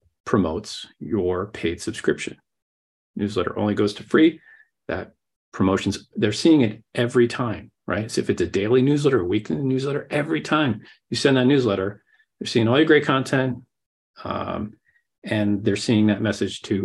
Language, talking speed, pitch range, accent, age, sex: English, 160 wpm, 95-125 Hz, American, 40-59, male